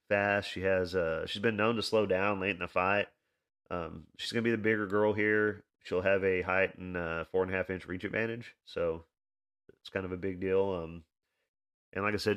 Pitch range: 90-105 Hz